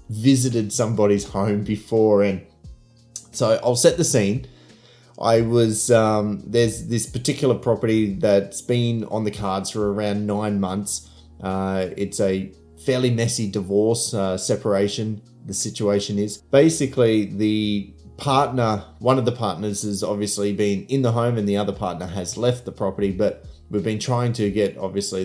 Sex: male